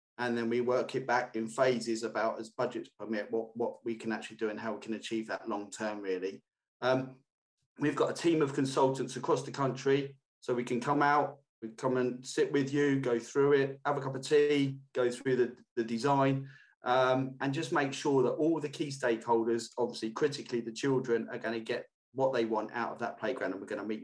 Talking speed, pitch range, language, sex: 220 wpm, 120-140 Hz, English, male